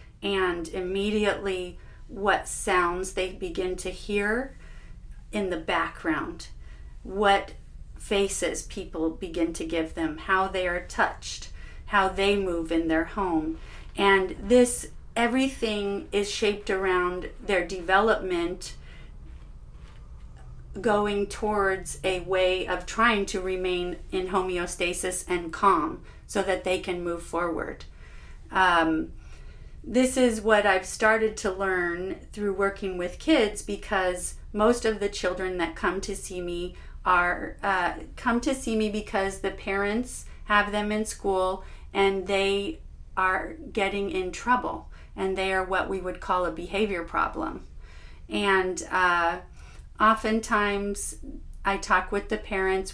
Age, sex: 40-59, female